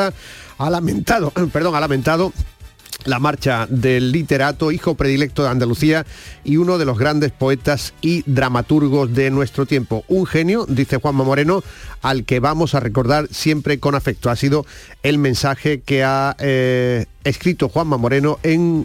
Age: 40-59